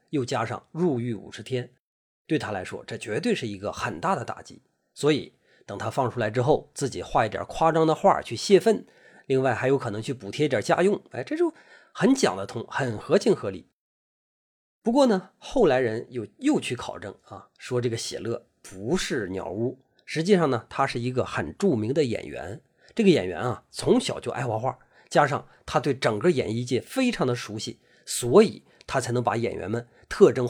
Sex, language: male, Chinese